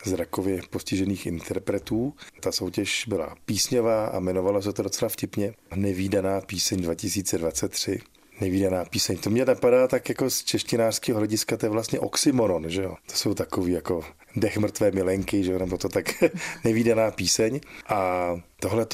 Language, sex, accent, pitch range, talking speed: Czech, male, native, 90-105 Hz, 150 wpm